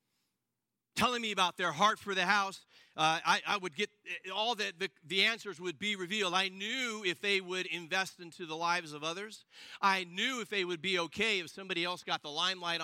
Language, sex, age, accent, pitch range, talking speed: English, male, 40-59, American, 170-210 Hz, 210 wpm